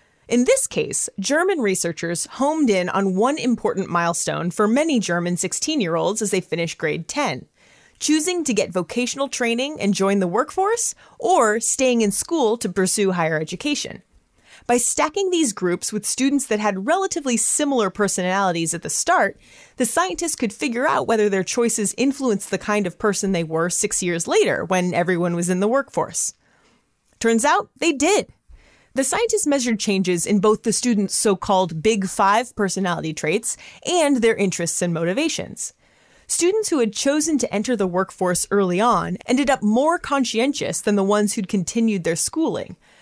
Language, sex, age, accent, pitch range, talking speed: English, female, 30-49, American, 185-270 Hz, 165 wpm